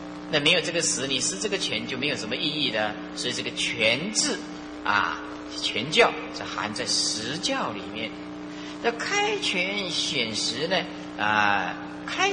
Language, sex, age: Chinese, male, 30-49